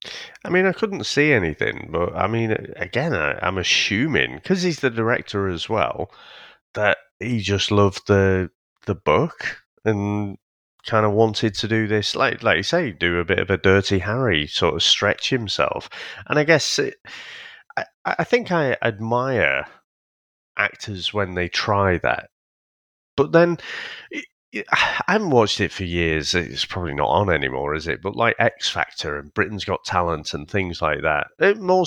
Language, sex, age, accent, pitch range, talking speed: English, male, 30-49, British, 95-145 Hz, 170 wpm